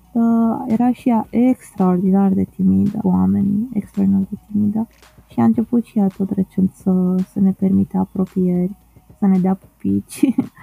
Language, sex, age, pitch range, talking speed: Romanian, female, 20-39, 190-225 Hz, 150 wpm